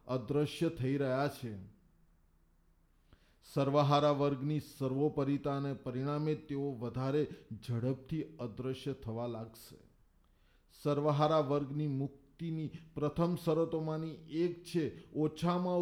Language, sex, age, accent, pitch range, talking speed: Gujarati, male, 50-69, native, 130-160 Hz, 85 wpm